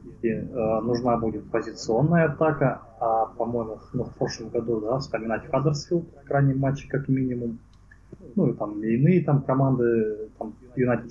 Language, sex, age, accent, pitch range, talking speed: Russian, male, 20-39, native, 110-130 Hz, 140 wpm